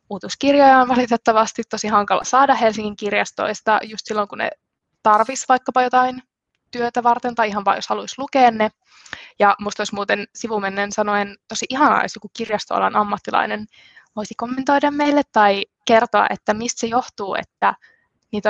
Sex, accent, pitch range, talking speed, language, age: female, native, 210-245 Hz, 150 wpm, Finnish, 20-39